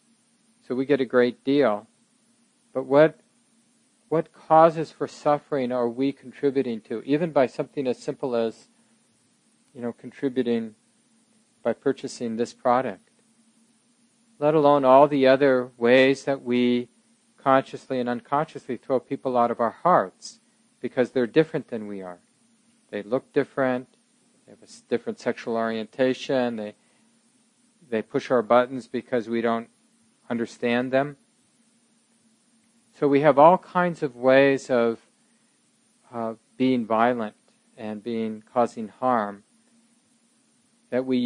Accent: American